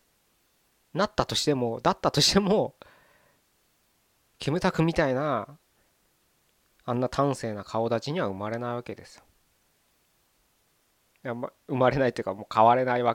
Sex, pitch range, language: male, 115-165 Hz, Japanese